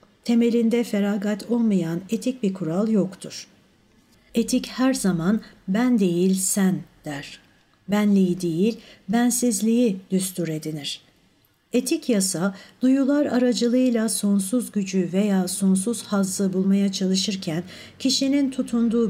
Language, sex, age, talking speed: Turkish, female, 60-79, 100 wpm